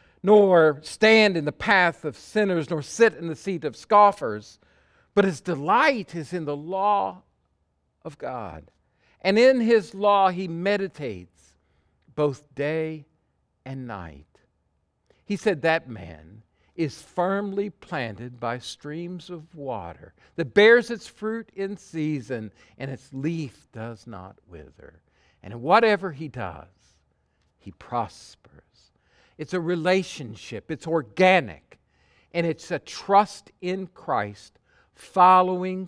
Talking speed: 125 wpm